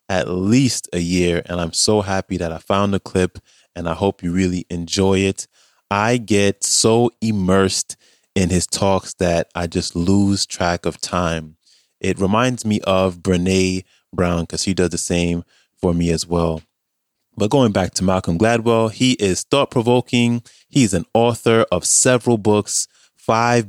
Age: 20-39